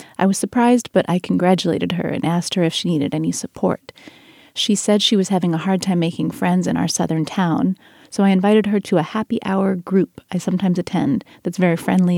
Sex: female